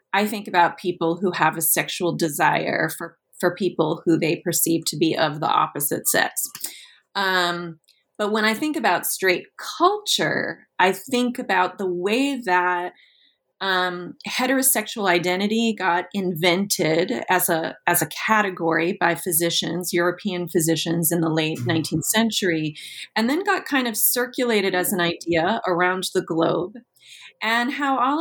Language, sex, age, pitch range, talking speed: English, female, 30-49, 175-225 Hz, 145 wpm